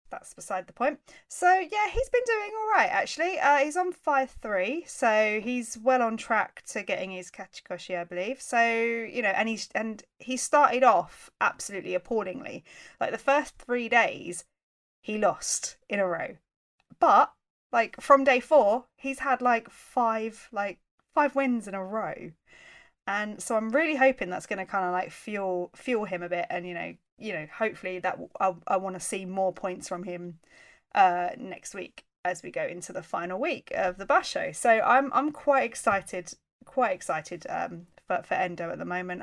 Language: English